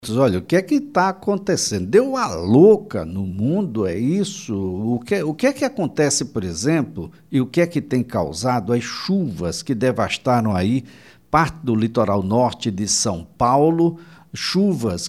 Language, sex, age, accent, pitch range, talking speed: Portuguese, male, 60-79, Brazilian, 120-170 Hz, 165 wpm